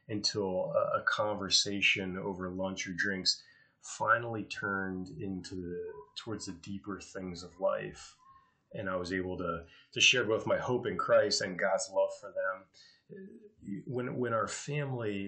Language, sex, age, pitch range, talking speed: English, male, 30-49, 90-125 Hz, 150 wpm